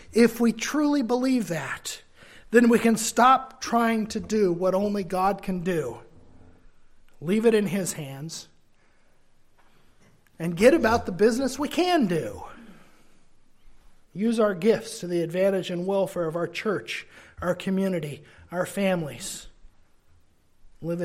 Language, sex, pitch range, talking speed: English, male, 165-220 Hz, 130 wpm